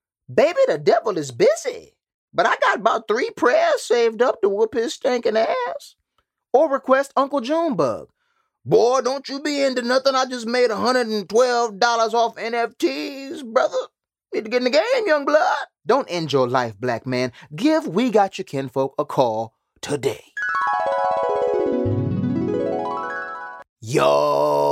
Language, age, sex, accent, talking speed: English, 30-49, male, American, 140 wpm